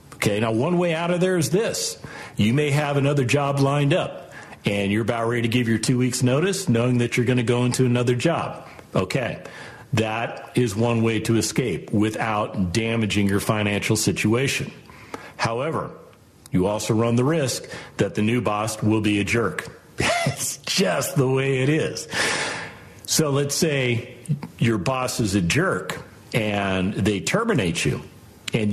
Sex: male